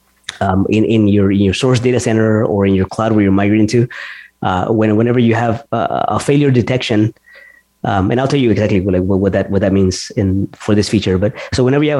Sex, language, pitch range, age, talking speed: male, English, 100-125 Hz, 20-39, 240 wpm